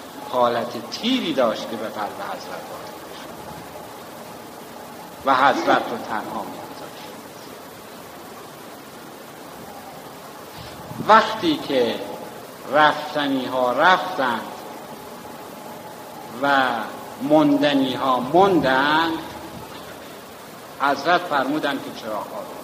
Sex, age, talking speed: male, 60-79, 70 wpm